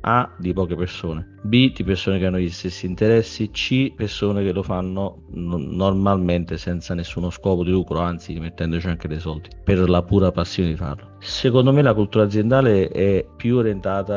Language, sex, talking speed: Italian, male, 180 wpm